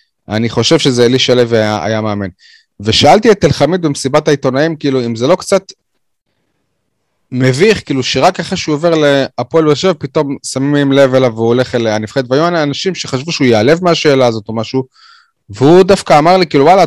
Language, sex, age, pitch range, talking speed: Hebrew, male, 30-49, 115-160 Hz, 180 wpm